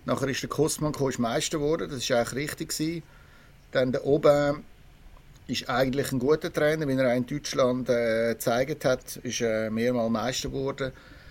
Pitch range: 120-145 Hz